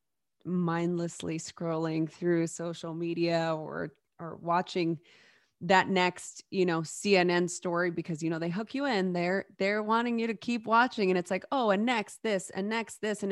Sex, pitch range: female, 165-210 Hz